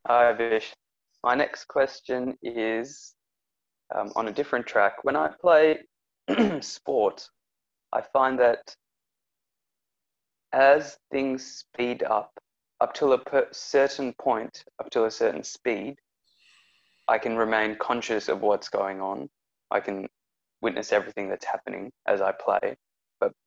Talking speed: 130 wpm